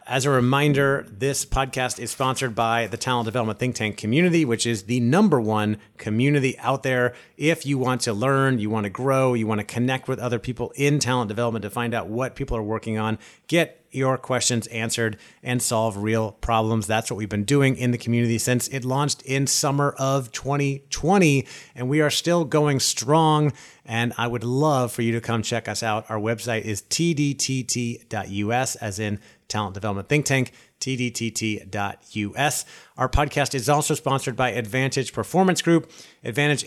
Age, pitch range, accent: 30-49, 115-140 Hz, American